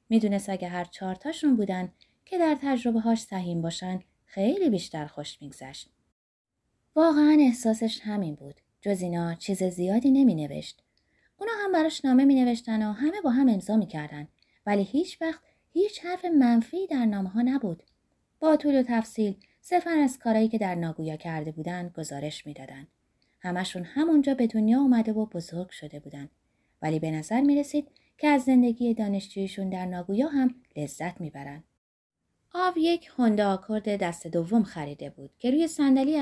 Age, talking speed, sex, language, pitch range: 20-39, 150 wpm, female, Persian, 170-265 Hz